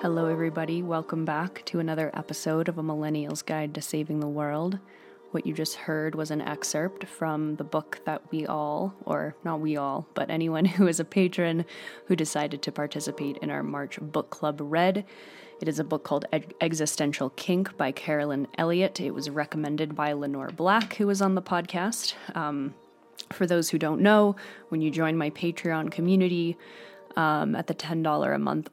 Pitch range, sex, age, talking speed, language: 150-180 Hz, female, 20-39, 180 wpm, English